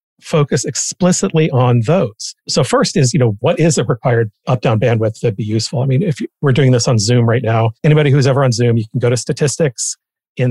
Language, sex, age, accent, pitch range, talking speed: English, male, 40-59, American, 120-160 Hz, 235 wpm